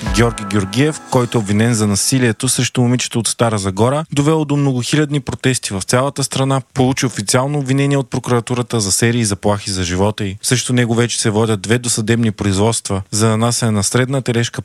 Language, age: Bulgarian, 20-39